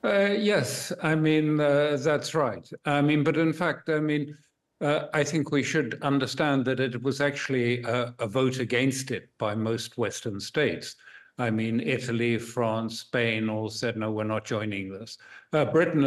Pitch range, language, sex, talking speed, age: 115-150 Hz, English, male, 175 wpm, 60-79